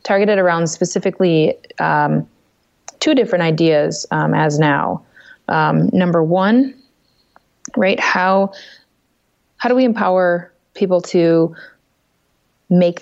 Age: 20-39